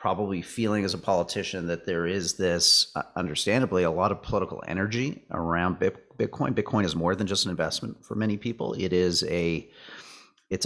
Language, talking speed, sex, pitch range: English, 175 wpm, male, 90-120 Hz